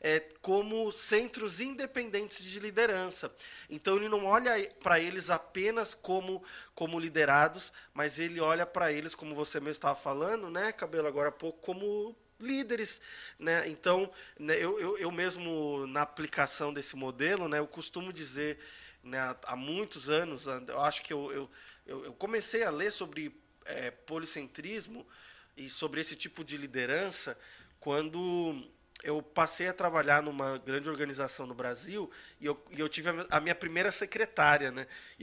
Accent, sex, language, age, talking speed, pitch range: Brazilian, male, Portuguese, 20-39, 155 wpm, 145-185 Hz